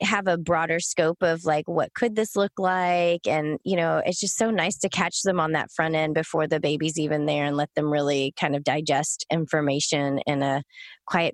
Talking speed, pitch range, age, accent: 215 wpm, 155-190 Hz, 20-39, American